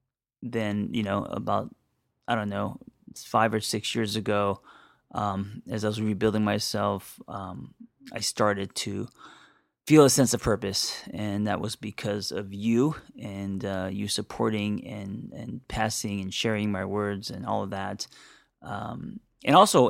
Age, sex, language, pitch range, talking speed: 20-39, male, English, 105-125 Hz, 155 wpm